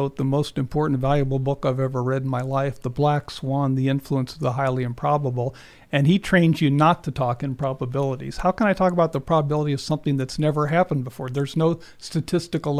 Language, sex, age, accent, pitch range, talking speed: English, male, 50-69, American, 140-170 Hz, 210 wpm